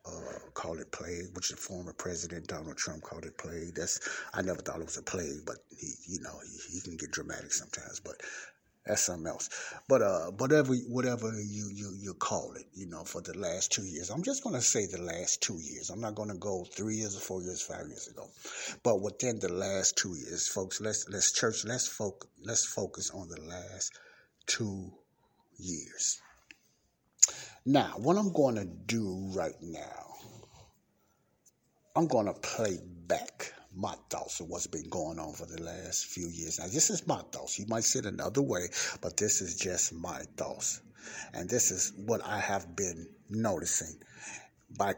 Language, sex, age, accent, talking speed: English, male, 60-79, American, 190 wpm